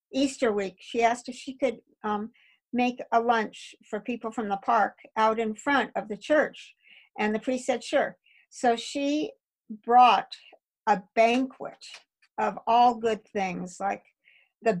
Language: English